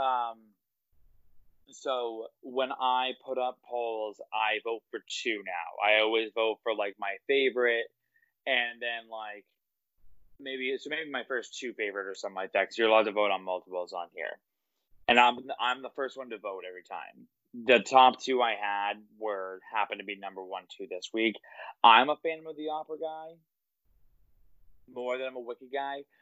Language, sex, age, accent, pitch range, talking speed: English, male, 20-39, American, 105-145 Hz, 180 wpm